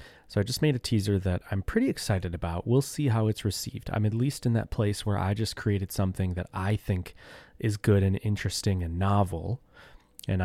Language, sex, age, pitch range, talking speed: English, male, 30-49, 90-110 Hz, 215 wpm